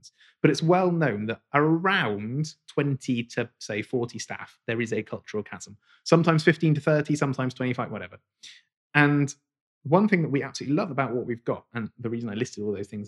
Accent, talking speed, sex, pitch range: British, 195 wpm, male, 110-145 Hz